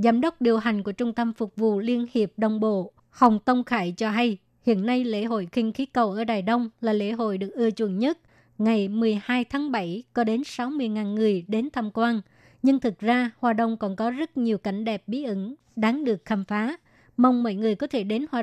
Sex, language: male, Vietnamese